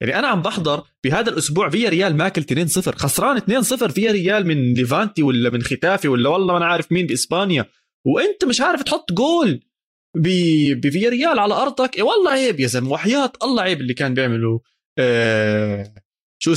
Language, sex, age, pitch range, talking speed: Arabic, male, 20-39, 125-185 Hz, 175 wpm